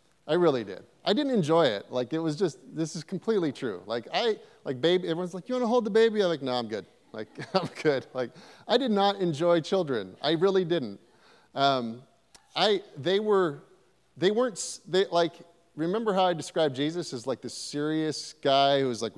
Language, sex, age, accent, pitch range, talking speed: English, male, 30-49, American, 120-180 Hz, 205 wpm